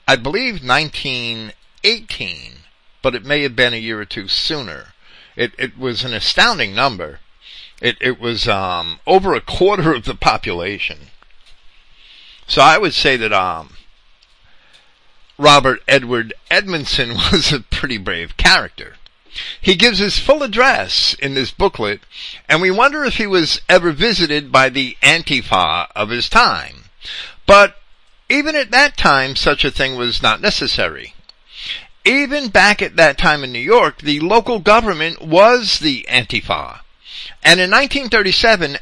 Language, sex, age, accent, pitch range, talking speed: English, male, 50-69, American, 130-200 Hz, 145 wpm